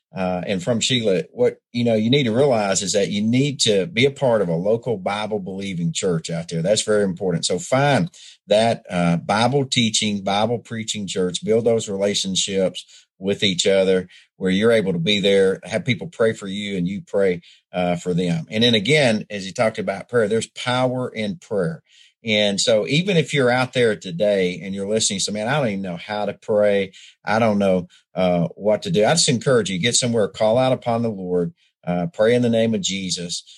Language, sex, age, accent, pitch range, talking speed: English, male, 40-59, American, 95-120 Hz, 215 wpm